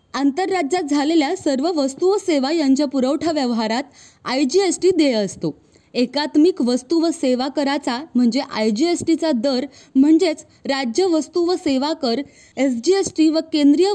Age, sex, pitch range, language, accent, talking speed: 20-39, female, 265-330 Hz, Marathi, native, 160 wpm